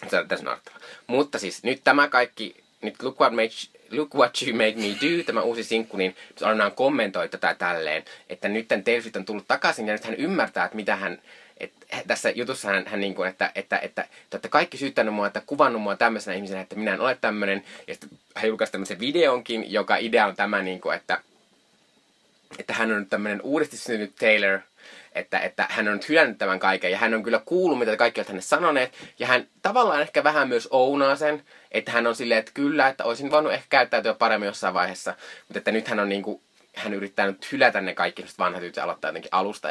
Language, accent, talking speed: Finnish, native, 210 wpm